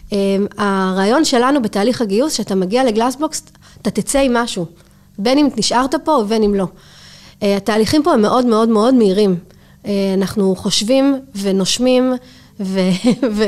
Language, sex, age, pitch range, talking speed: Hebrew, female, 30-49, 200-245 Hz, 145 wpm